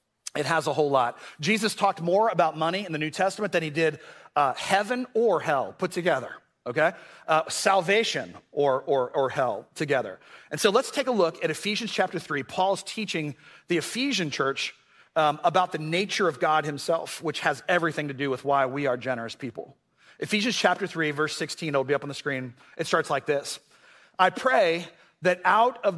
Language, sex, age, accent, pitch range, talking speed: English, male, 40-59, American, 155-210 Hz, 190 wpm